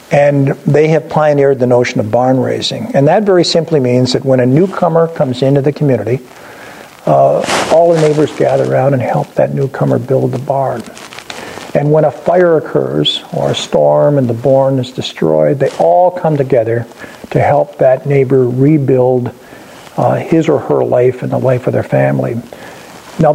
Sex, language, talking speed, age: male, English, 175 wpm, 50-69